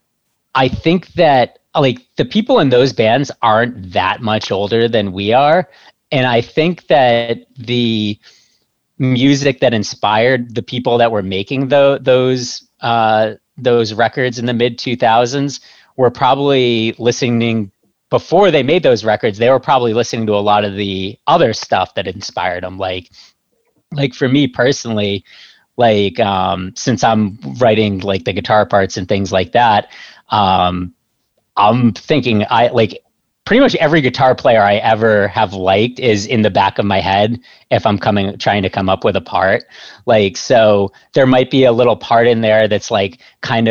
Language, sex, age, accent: English, male, 30-49, American